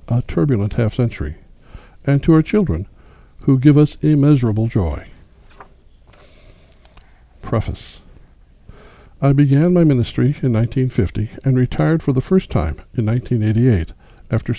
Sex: male